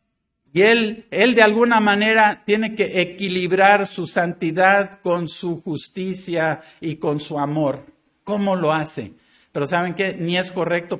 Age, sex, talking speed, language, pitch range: 50-69, male, 145 wpm, Spanish, 170-220 Hz